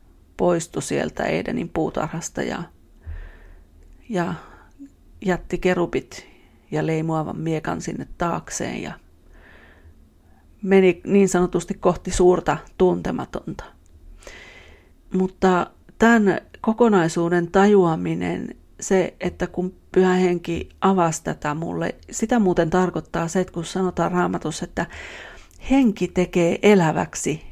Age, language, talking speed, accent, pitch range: 40-59, Finnish, 95 wpm, native, 160-185 Hz